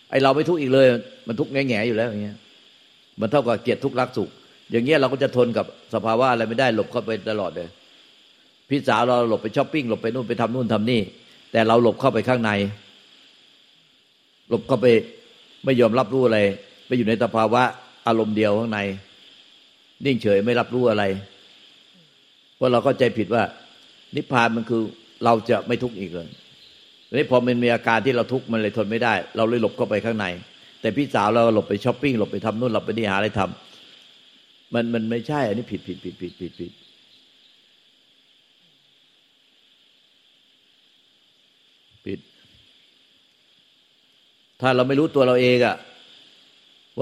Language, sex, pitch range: Thai, male, 110-130 Hz